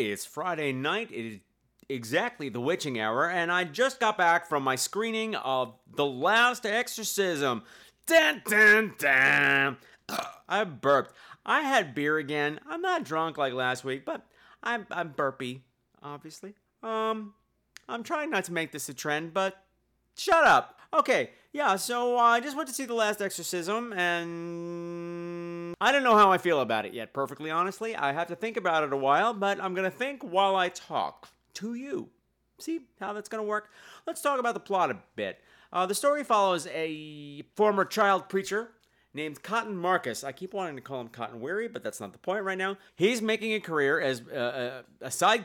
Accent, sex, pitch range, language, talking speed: American, male, 150-225 Hz, English, 185 wpm